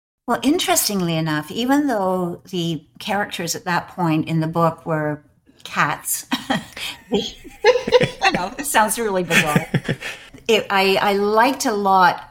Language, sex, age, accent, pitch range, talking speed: English, female, 60-79, American, 155-190 Hz, 130 wpm